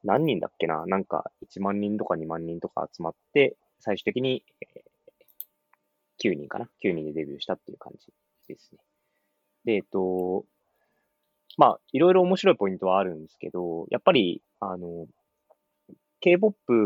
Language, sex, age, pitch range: Japanese, male, 20-39, 80-120 Hz